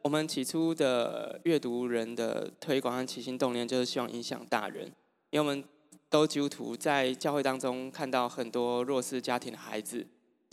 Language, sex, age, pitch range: Chinese, male, 20-39, 125-150 Hz